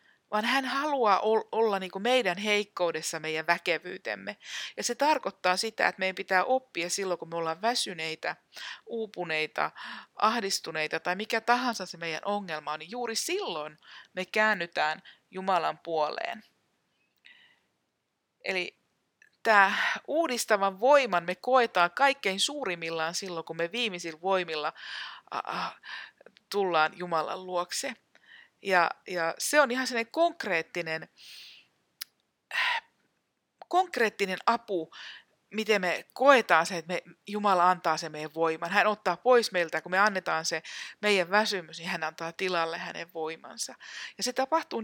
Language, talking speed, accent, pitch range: Finnish, 125 wpm, native, 170-225 Hz